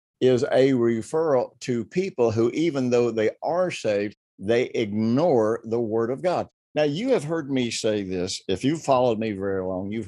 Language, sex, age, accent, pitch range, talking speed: English, male, 50-69, American, 100-130 Hz, 185 wpm